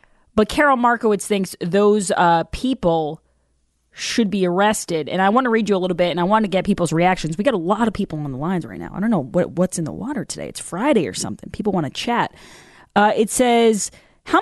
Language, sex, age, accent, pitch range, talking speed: English, female, 20-39, American, 170-220 Hz, 240 wpm